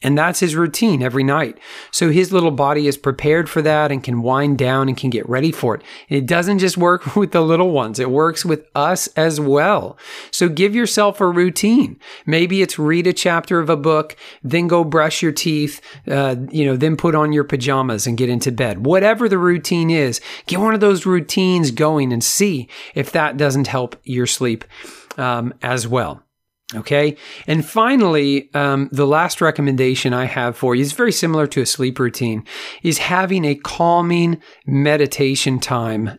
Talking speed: 190 wpm